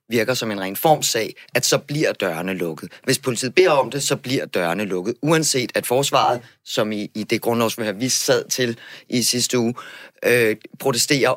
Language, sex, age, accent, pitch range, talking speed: Danish, male, 30-49, native, 130-165 Hz, 200 wpm